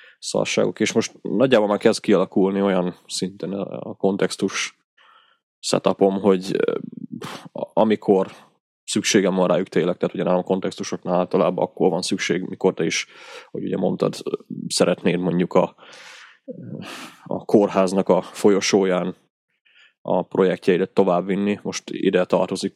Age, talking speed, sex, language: 20-39, 120 wpm, male, Hungarian